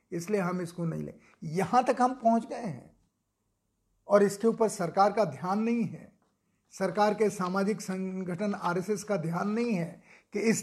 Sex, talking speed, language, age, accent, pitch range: male, 170 wpm, Hindi, 40-59, native, 185-215 Hz